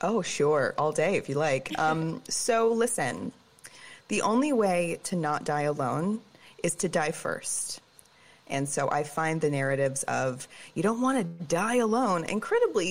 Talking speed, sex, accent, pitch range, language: 165 wpm, female, American, 140-205 Hz, English